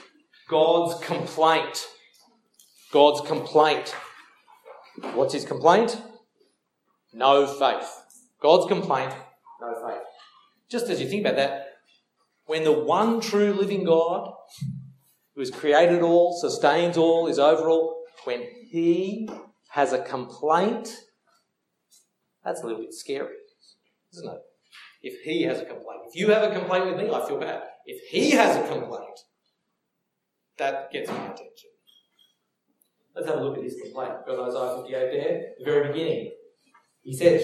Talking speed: 140 wpm